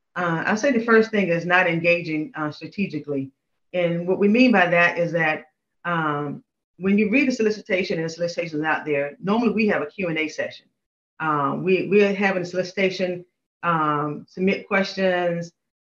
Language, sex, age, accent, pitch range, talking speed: English, female, 40-59, American, 160-200 Hz, 175 wpm